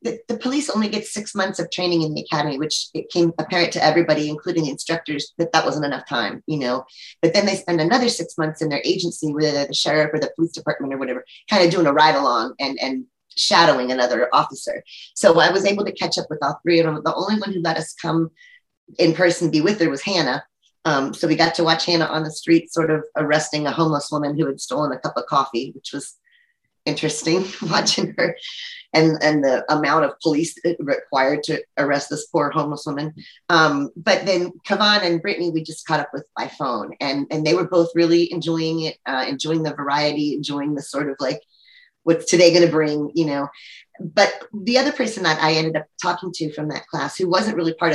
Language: English